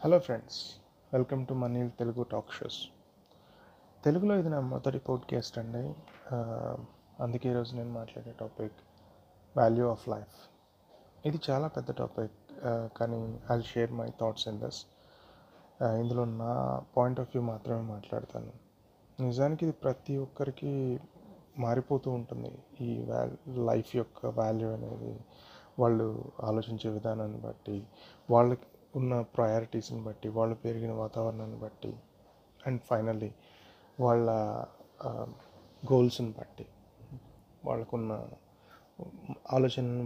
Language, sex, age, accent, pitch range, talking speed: Telugu, male, 30-49, native, 110-130 Hz, 105 wpm